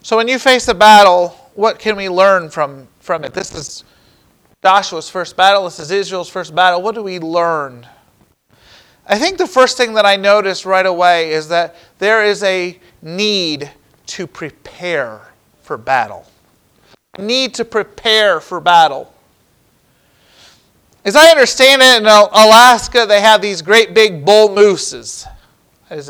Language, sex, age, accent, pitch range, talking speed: English, male, 40-59, American, 180-245 Hz, 150 wpm